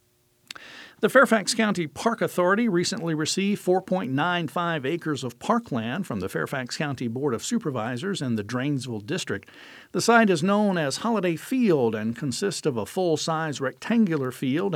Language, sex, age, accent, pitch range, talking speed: English, male, 50-69, American, 130-190 Hz, 150 wpm